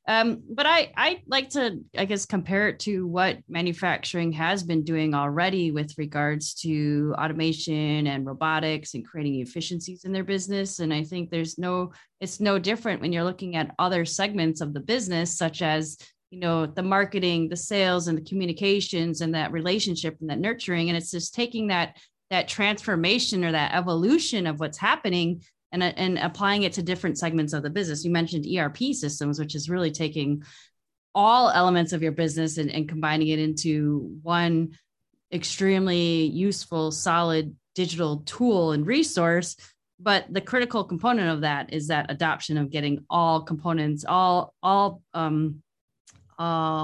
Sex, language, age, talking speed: female, English, 30-49, 165 wpm